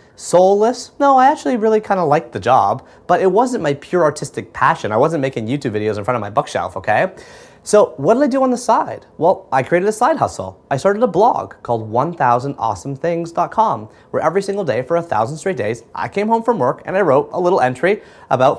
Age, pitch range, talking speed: 30-49, 145-225 Hz, 225 wpm